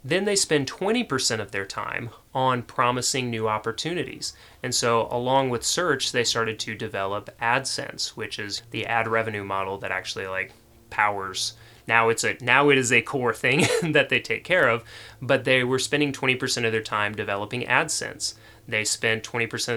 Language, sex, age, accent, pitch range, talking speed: English, male, 30-49, American, 110-130 Hz, 175 wpm